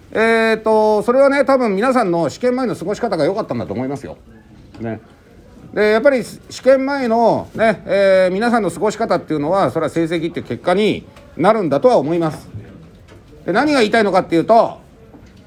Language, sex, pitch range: Japanese, male, 140-215 Hz